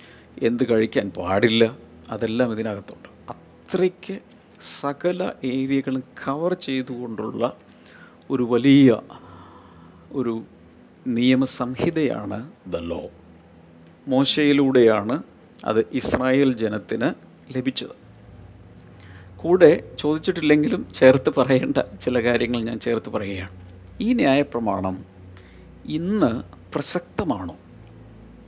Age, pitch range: 50-69, 95-135 Hz